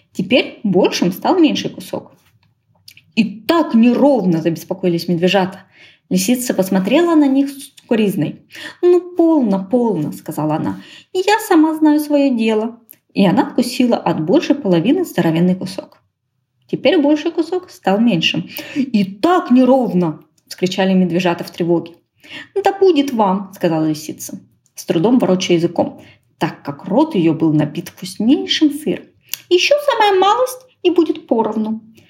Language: Ukrainian